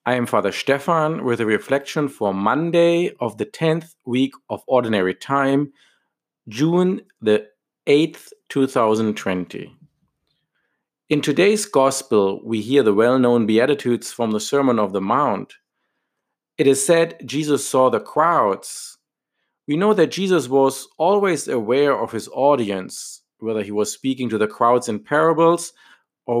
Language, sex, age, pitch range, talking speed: English, male, 50-69, 120-160 Hz, 145 wpm